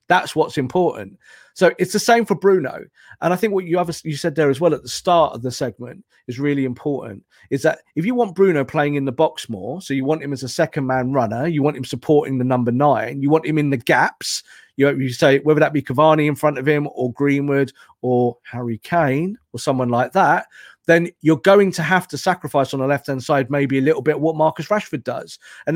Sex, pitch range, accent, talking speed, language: male, 140-170 Hz, British, 235 wpm, English